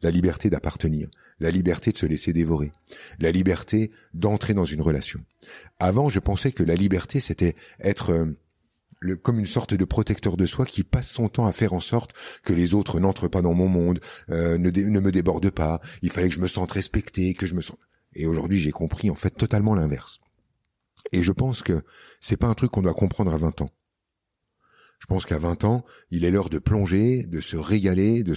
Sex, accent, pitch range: male, French, 85-105 Hz